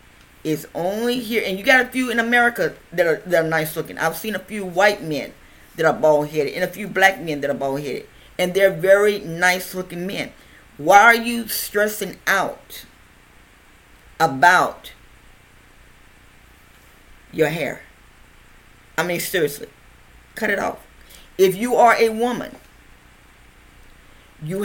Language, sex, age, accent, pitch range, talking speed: English, female, 40-59, American, 140-200 Hz, 150 wpm